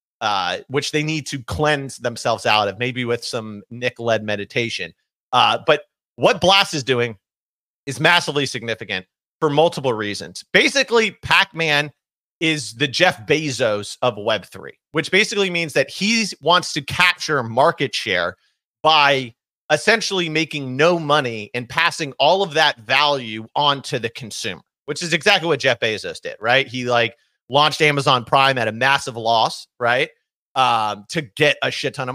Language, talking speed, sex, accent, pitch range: English, 155 wpm, male, American, 120-160 Hz